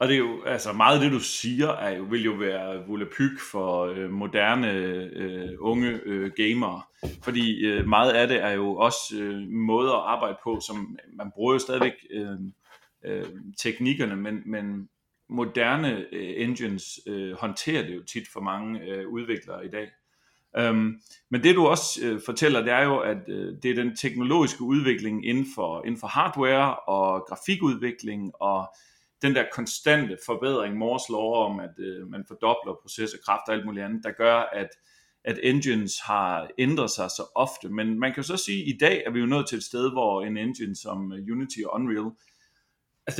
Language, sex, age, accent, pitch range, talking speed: Danish, male, 30-49, native, 100-130 Hz, 190 wpm